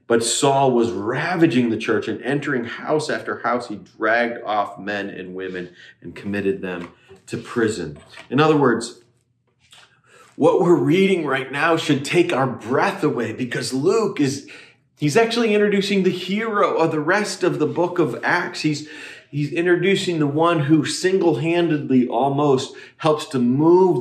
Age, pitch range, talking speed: 40-59, 120-150 Hz, 155 wpm